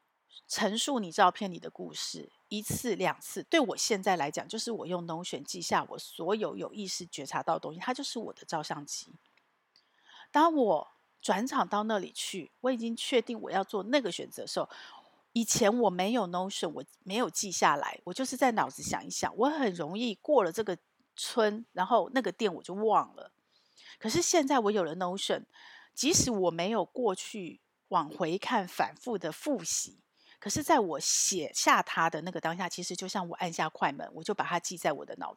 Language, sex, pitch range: Chinese, female, 180-240 Hz